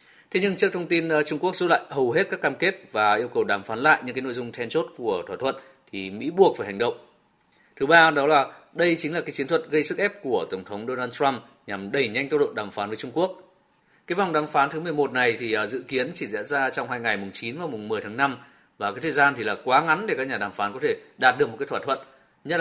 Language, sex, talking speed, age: Vietnamese, male, 285 wpm, 20-39